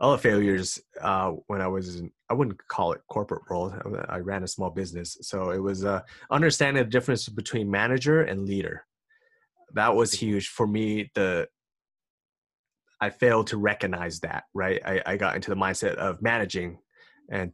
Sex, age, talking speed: male, 30-49, 170 wpm